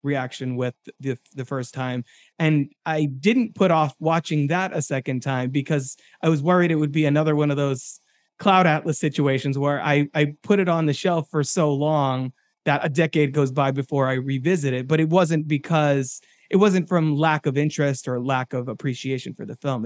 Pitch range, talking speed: 140-180 Hz, 200 wpm